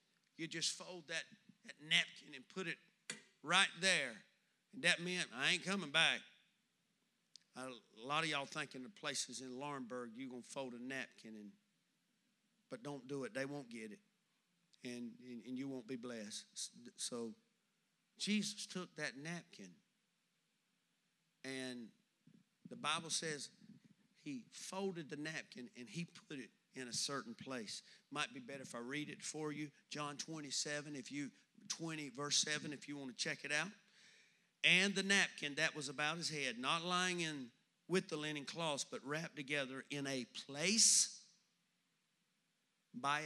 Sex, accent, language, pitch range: male, American, English, 140-195 Hz